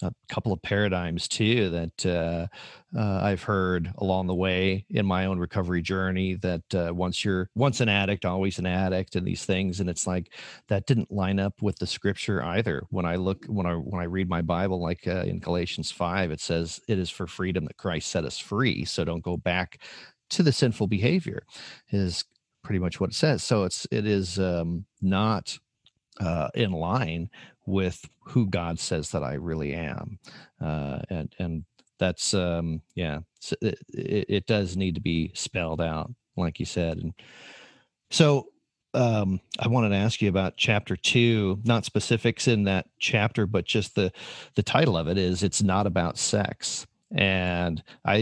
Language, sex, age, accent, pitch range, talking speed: English, male, 40-59, American, 90-110 Hz, 180 wpm